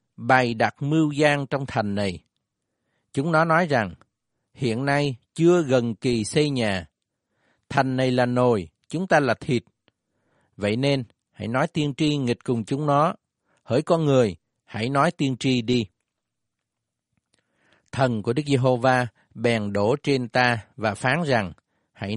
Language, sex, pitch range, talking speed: Vietnamese, male, 115-145 Hz, 150 wpm